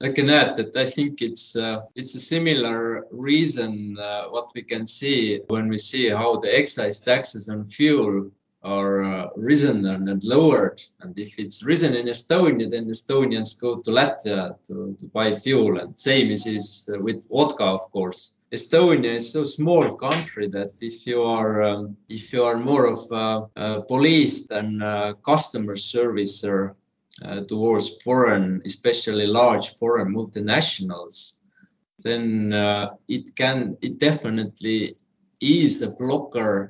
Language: English